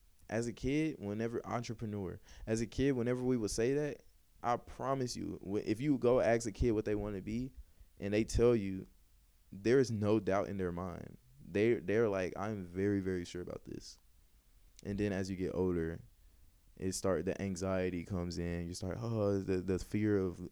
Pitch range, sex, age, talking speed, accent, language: 90-110 Hz, male, 20-39, 195 wpm, American, English